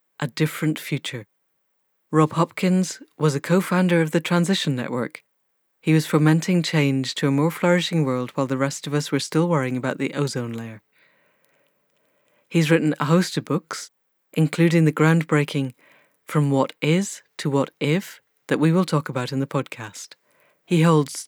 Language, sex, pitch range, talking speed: English, female, 140-165 Hz, 165 wpm